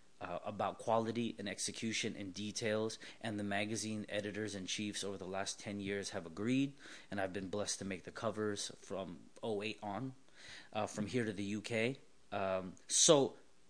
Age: 30-49